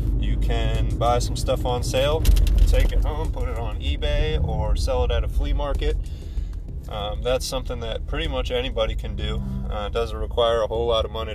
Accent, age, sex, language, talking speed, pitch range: American, 20-39, male, English, 205 wpm, 70-110 Hz